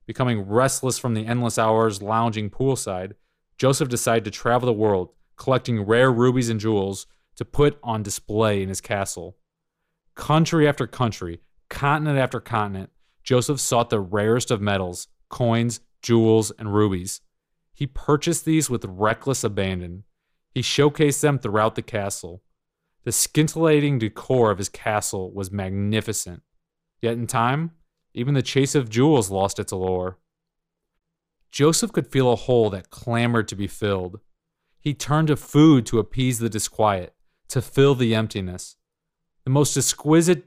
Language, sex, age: English, male, 30-49